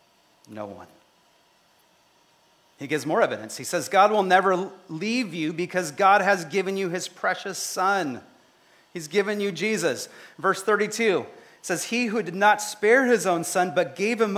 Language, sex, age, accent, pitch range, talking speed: English, male, 30-49, American, 145-220 Hz, 165 wpm